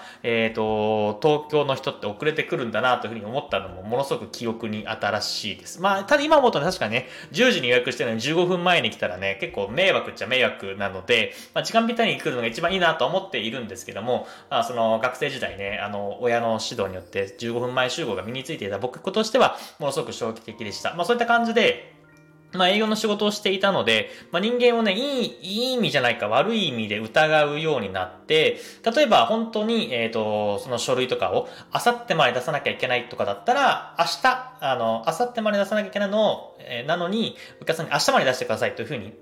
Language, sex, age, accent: Japanese, male, 20-39, native